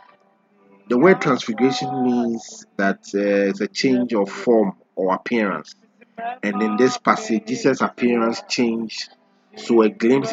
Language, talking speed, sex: English, 135 wpm, male